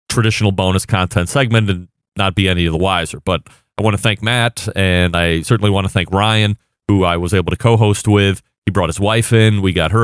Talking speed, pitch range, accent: 235 wpm, 95-120 Hz, American